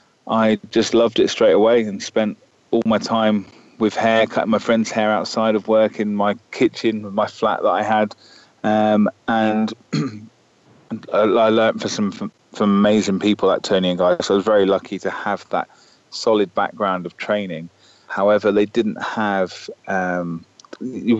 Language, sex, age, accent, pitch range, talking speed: English, male, 30-49, British, 95-110 Hz, 175 wpm